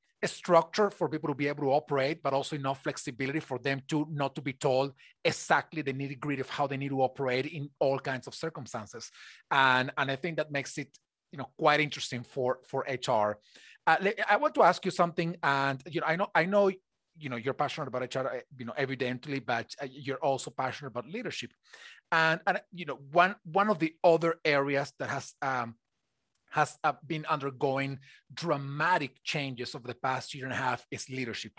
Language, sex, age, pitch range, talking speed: English, male, 30-49, 135-165 Hz, 200 wpm